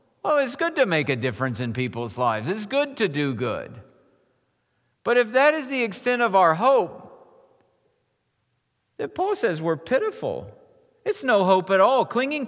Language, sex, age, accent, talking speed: English, male, 50-69, American, 170 wpm